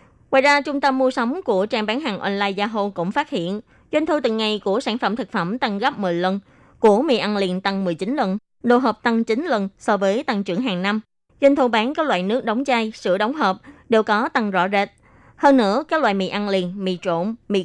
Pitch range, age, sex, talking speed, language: 190-255 Hz, 20-39, female, 245 wpm, Vietnamese